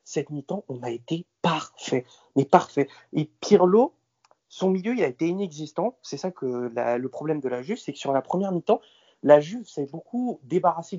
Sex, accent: male, French